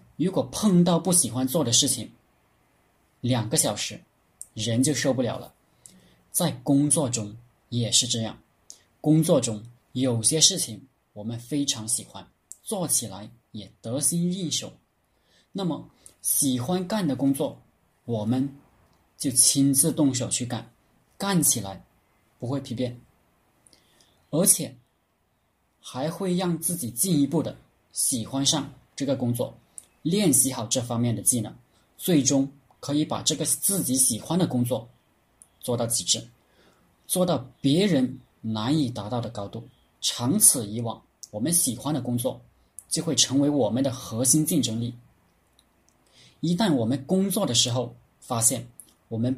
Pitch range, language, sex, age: 115-150 Hz, Chinese, male, 20-39